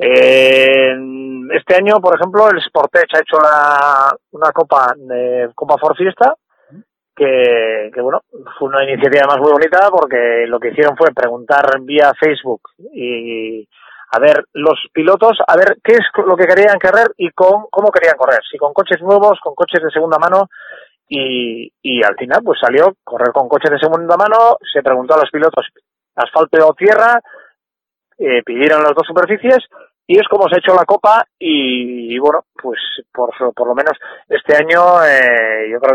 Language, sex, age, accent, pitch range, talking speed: Spanish, male, 30-49, Spanish, 145-200 Hz, 180 wpm